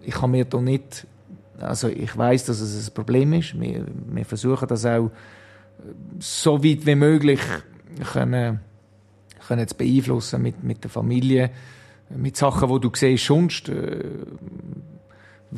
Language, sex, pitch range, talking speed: German, male, 120-145 Hz, 145 wpm